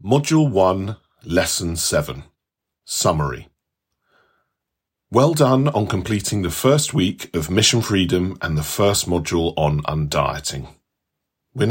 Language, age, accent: English, 40-59, British